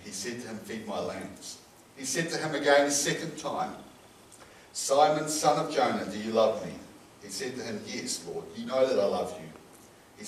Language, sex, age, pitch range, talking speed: English, male, 60-79, 125-200 Hz, 210 wpm